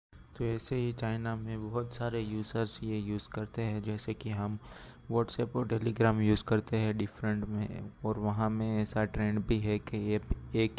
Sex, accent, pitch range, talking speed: male, native, 105-110 Hz, 180 wpm